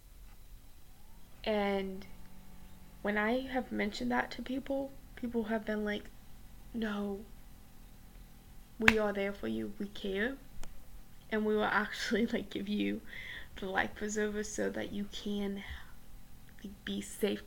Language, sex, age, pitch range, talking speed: English, female, 10-29, 200-230 Hz, 125 wpm